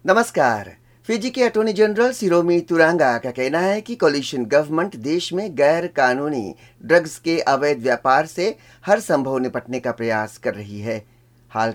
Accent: native